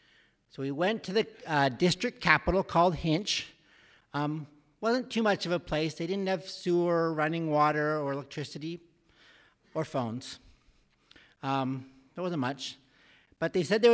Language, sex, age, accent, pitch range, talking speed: English, male, 50-69, American, 145-185 Hz, 150 wpm